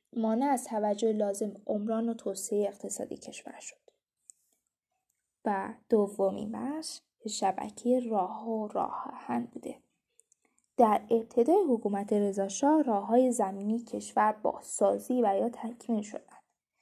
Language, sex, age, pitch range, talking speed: Persian, female, 10-29, 210-250 Hz, 120 wpm